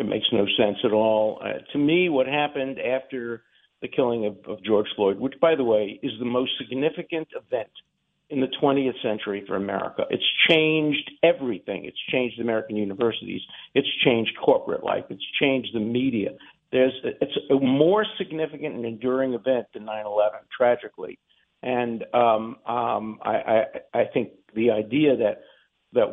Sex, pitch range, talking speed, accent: male, 110-150 Hz, 160 wpm, American